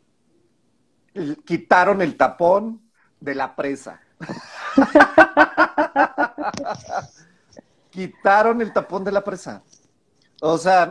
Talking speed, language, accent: 75 wpm, Spanish, Mexican